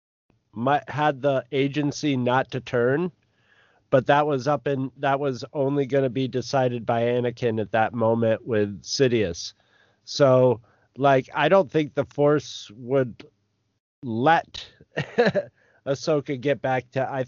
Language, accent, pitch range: English, American, 110-140 Hz